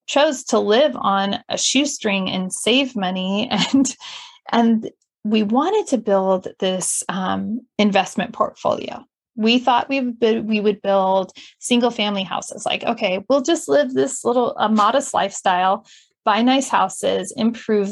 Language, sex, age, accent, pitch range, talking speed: English, female, 30-49, American, 195-250 Hz, 145 wpm